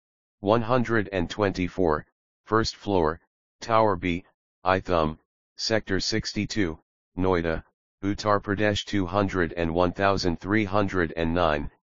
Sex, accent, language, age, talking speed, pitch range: male, American, English, 40-59, 60 wpm, 85-100 Hz